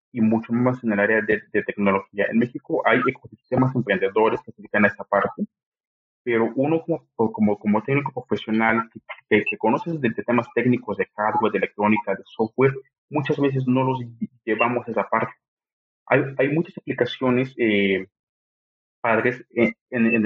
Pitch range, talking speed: 105-130 Hz, 170 wpm